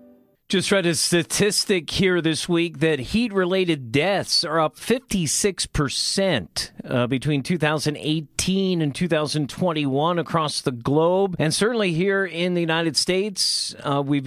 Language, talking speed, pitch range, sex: English, 125 wpm, 140-180 Hz, male